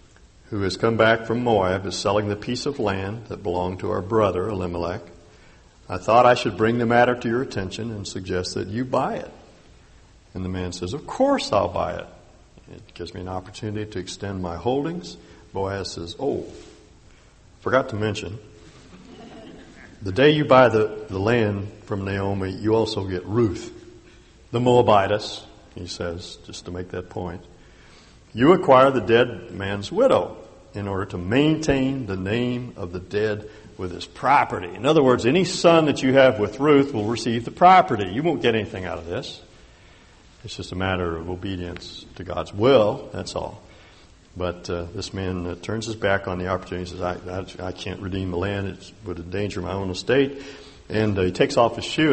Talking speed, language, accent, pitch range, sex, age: 190 wpm, English, American, 90-115 Hz, male, 60-79